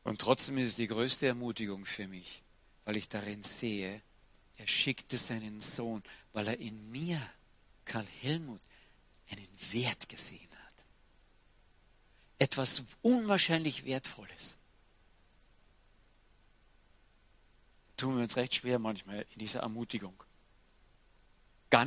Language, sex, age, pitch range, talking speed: German, male, 50-69, 100-140 Hz, 110 wpm